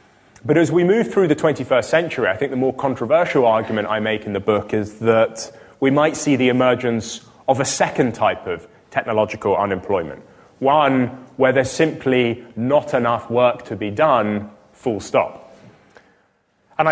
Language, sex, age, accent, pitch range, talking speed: English, male, 20-39, British, 115-145 Hz, 165 wpm